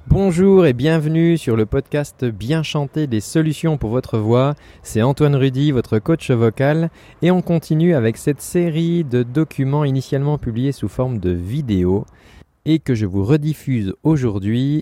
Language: French